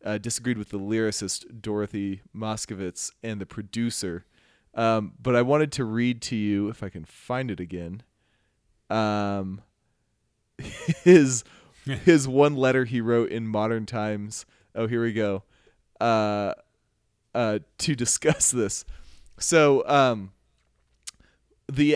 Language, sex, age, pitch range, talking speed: English, male, 30-49, 100-130 Hz, 125 wpm